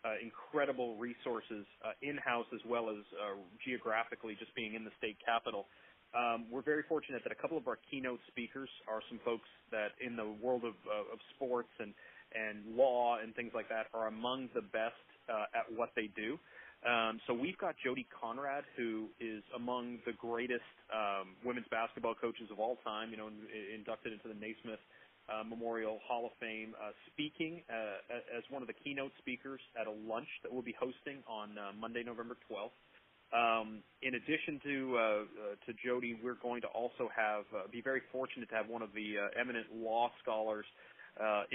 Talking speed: 190 wpm